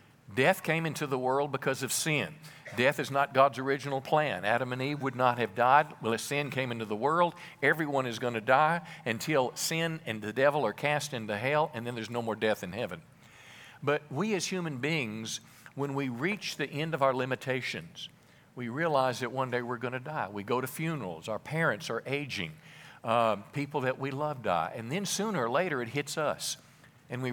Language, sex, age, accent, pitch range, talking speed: English, male, 50-69, American, 120-150 Hz, 210 wpm